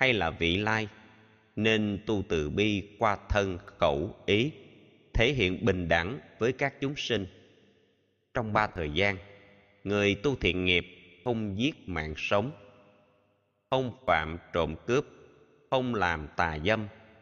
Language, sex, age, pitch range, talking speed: Vietnamese, male, 20-39, 90-115 Hz, 140 wpm